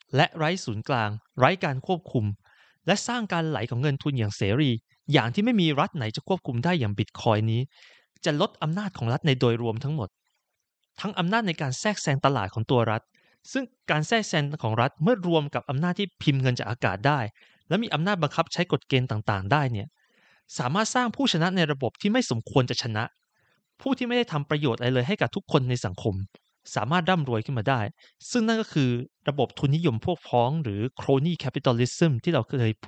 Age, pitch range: 20-39, 120-180 Hz